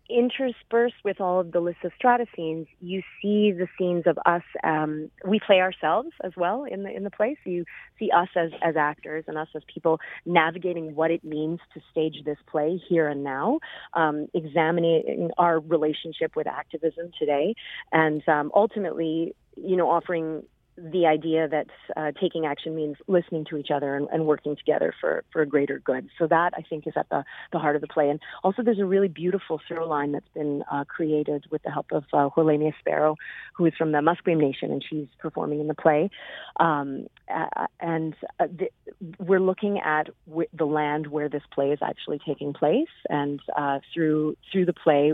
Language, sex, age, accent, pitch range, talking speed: English, female, 30-49, American, 150-180 Hz, 195 wpm